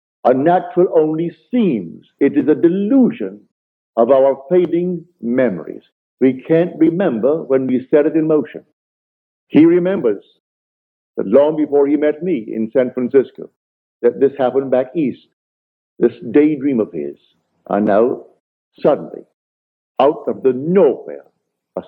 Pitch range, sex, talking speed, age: 115-165 Hz, male, 135 wpm, 60-79